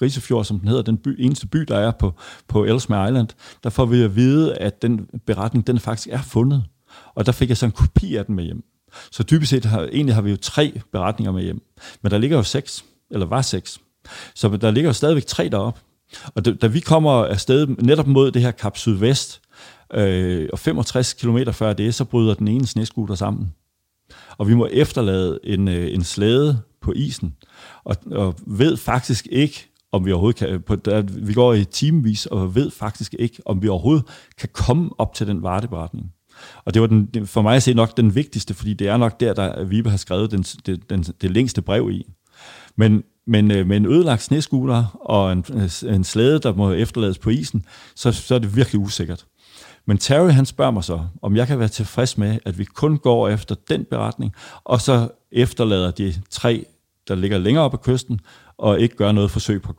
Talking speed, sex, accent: 210 wpm, male, native